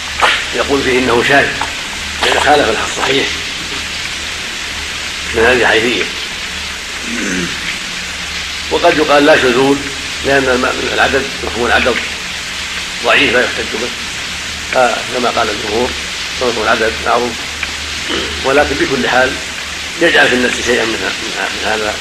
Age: 50-69